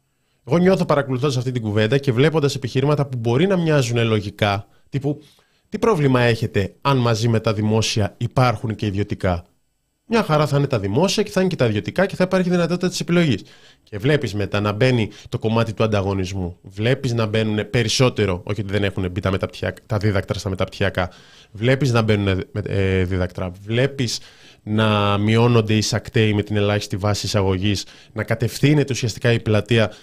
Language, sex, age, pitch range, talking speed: Greek, male, 20-39, 105-135 Hz, 170 wpm